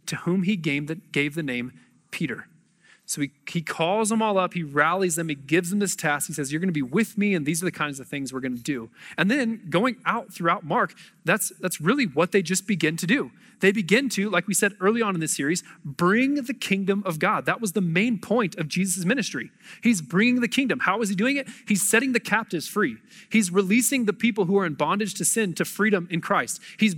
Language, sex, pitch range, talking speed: English, male, 170-220 Hz, 245 wpm